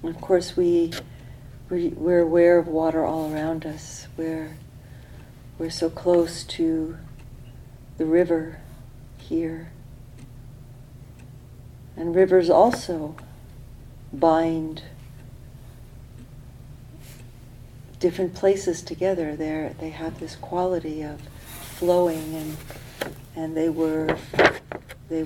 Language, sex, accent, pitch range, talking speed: English, female, American, 130-165 Hz, 90 wpm